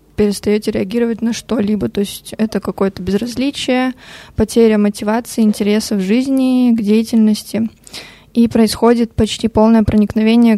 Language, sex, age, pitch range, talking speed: Russian, female, 20-39, 210-240 Hz, 120 wpm